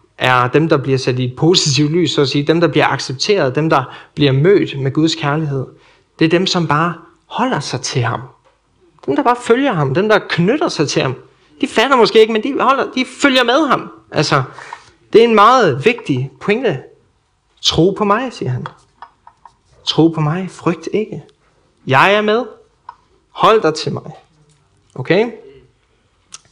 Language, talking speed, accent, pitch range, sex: Danish, 180 wpm, native, 140-210 Hz, male